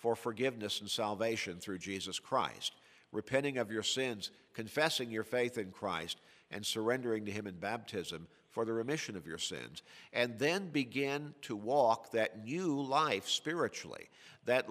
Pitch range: 100-125 Hz